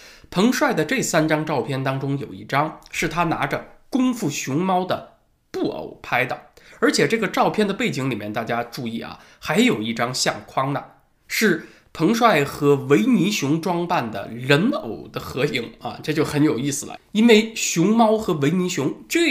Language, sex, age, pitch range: Chinese, male, 20-39, 130-180 Hz